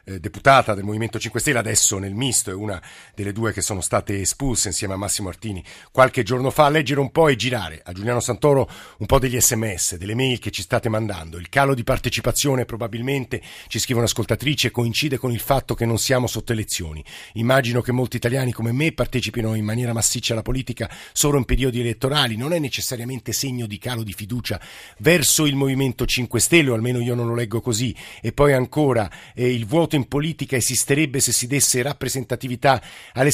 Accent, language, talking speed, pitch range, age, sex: native, Italian, 195 wpm, 115-140 Hz, 50-69, male